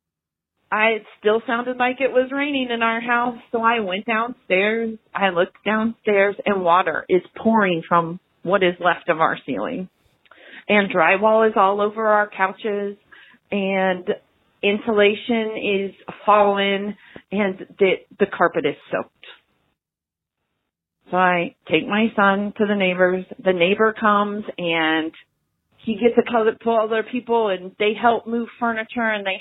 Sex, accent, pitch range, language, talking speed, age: female, American, 185-230 Hz, English, 145 wpm, 40-59